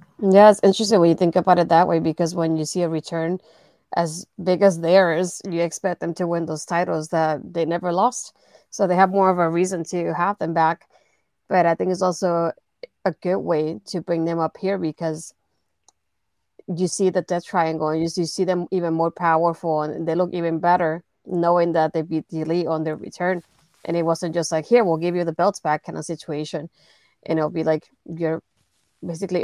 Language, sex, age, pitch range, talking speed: English, female, 30-49, 155-180 Hz, 210 wpm